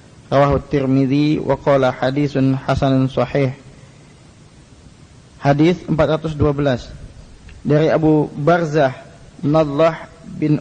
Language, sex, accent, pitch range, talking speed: Indonesian, male, native, 135-155 Hz, 70 wpm